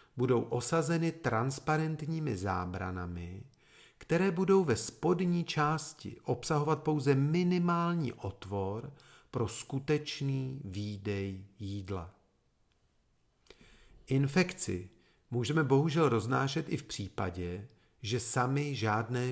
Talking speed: 85 wpm